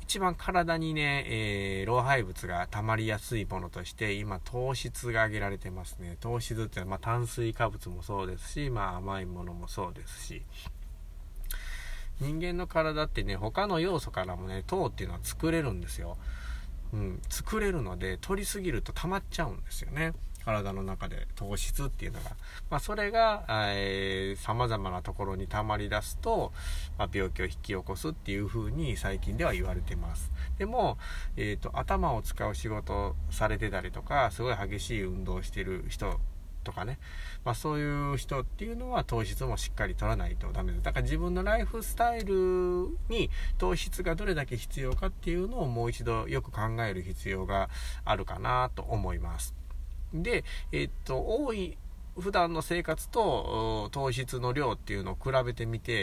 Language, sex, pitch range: Japanese, male, 90-130 Hz